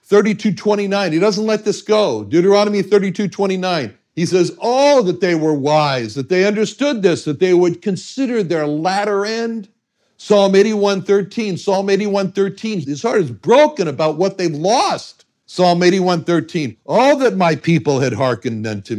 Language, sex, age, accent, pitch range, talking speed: English, male, 60-79, American, 145-210 Hz, 145 wpm